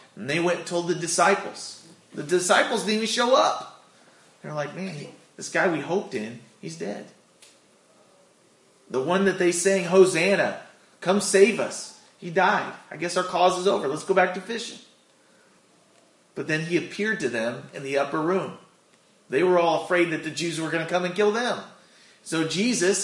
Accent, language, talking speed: American, English, 190 wpm